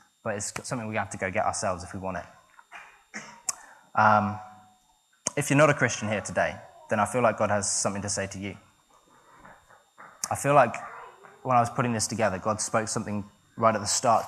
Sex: male